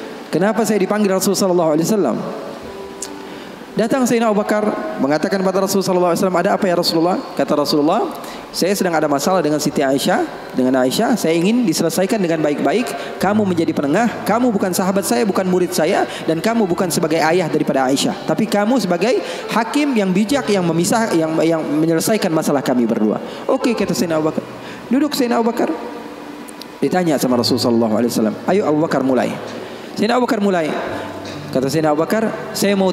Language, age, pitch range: Indonesian, 30-49, 170-240 Hz